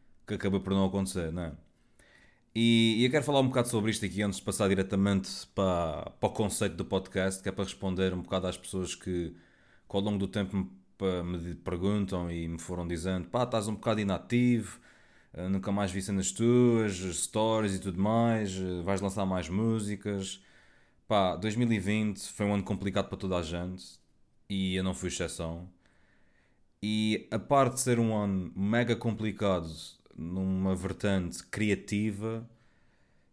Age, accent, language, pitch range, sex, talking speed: 20-39, Portuguese, Portuguese, 90-110 Hz, male, 165 wpm